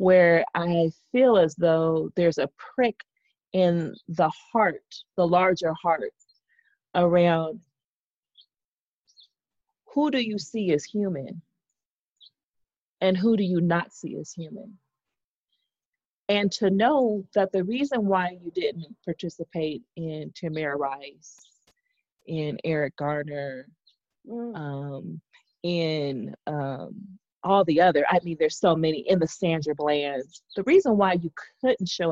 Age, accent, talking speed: 30-49, American, 120 wpm